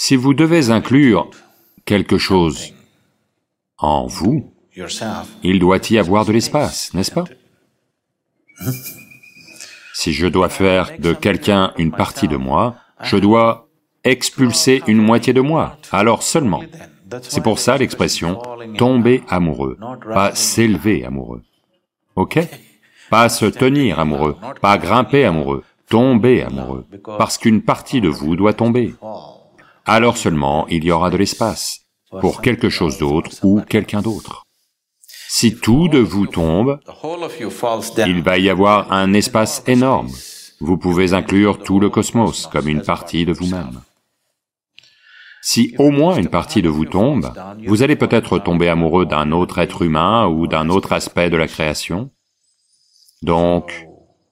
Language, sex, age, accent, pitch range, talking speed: English, male, 40-59, French, 85-115 Hz, 135 wpm